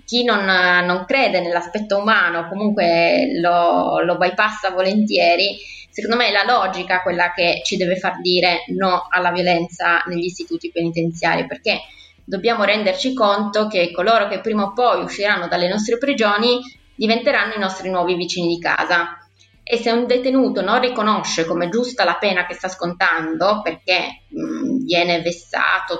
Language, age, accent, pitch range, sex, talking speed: Italian, 20-39, native, 175-215 Hz, female, 150 wpm